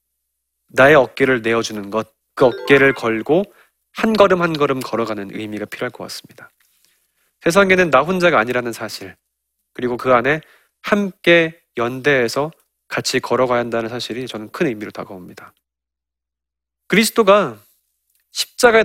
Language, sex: Korean, male